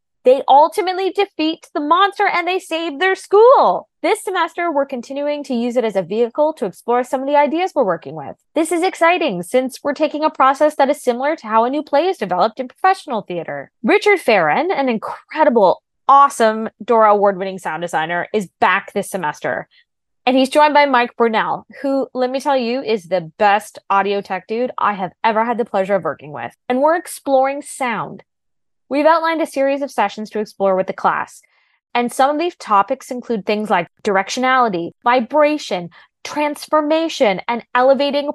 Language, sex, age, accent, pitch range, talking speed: English, female, 20-39, American, 215-310 Hz, 185 wpm